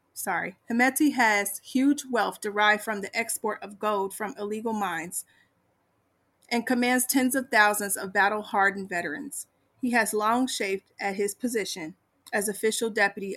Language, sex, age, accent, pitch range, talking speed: English, female, 30-49, American, 200-240 Hz, 145 wpm